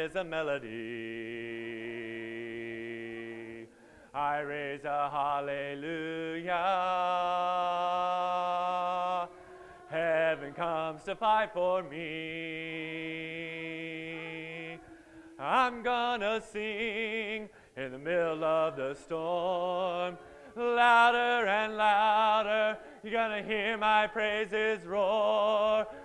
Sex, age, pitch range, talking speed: male, 30-49, 155-210 Hz, 70 wpm